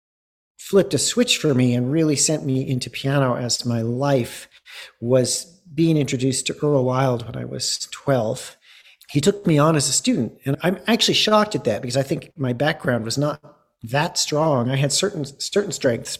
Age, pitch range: 40-59, 125-160 Hz